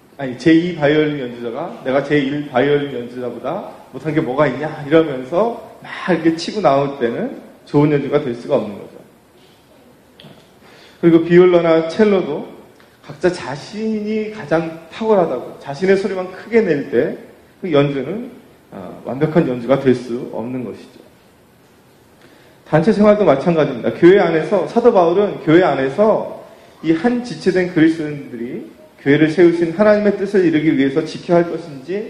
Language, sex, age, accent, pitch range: Korean, male, 30-49, native, 130-180 Hz